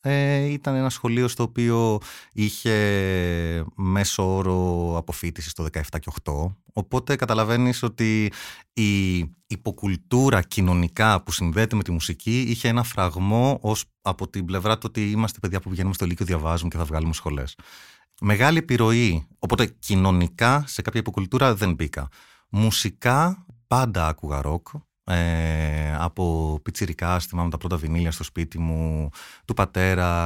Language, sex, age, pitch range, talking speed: Greek, male, 30-49, 85-110 Hz, 135 wpm